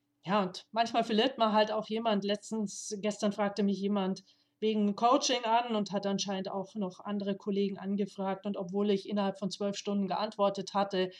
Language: German